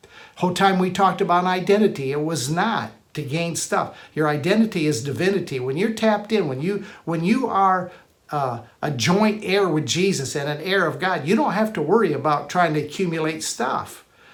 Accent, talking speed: American, 195 wpm